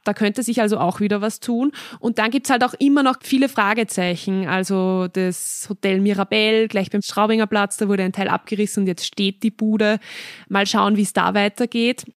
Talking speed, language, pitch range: 205 wpm, German, 185-220 Hz